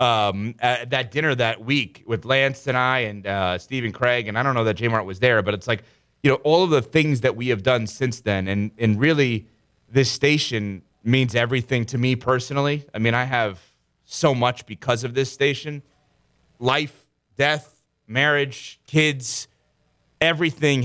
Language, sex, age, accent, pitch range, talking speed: English, male, 30-49, American, 115-140 Hz, 180 wpm